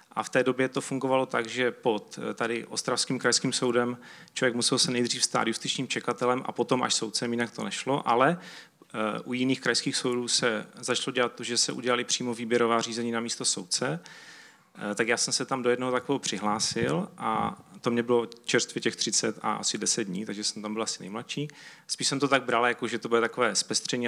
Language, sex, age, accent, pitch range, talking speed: Czech, male, 30-49, native, 110-130 Hz, 205 wpm